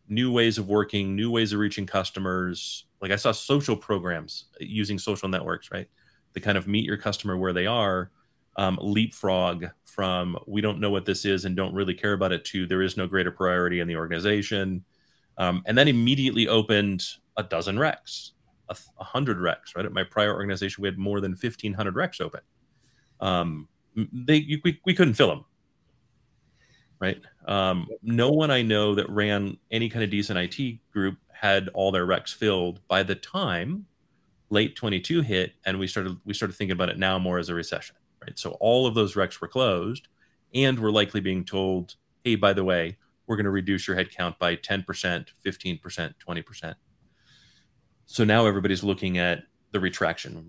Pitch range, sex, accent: 90-105 Hz, male, American